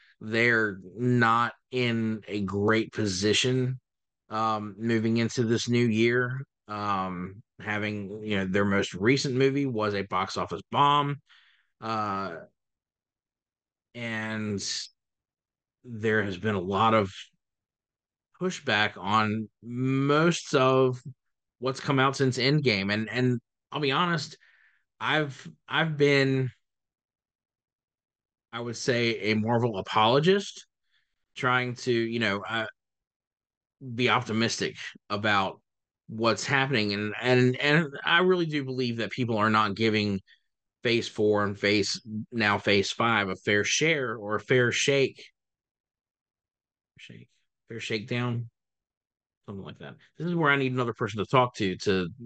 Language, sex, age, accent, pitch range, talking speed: English, male, 30-49, American, 105-130 Hz, 125 wpm